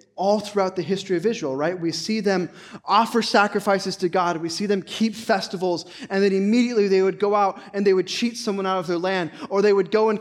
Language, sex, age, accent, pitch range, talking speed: English, male, 20-39, American, 150-195 Hz, 235 wpm